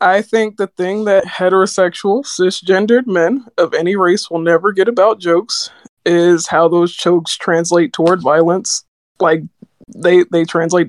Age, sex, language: 20-39, male, English